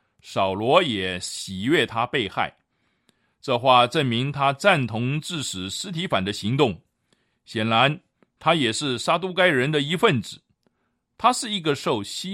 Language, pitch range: Chinese, 120-165 Hz